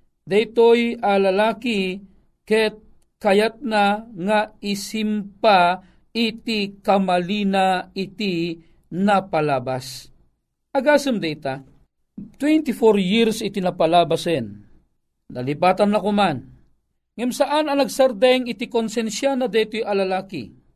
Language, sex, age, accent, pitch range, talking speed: Filipino, male, 50-69, native, 190-255 Hz, 85 wpm